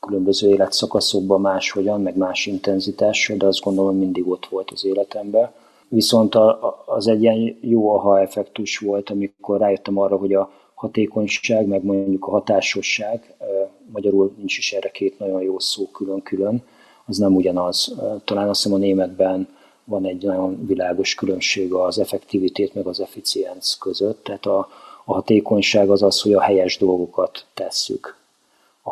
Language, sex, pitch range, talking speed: Hungarian, male, 95-100 Hz, 145 wpm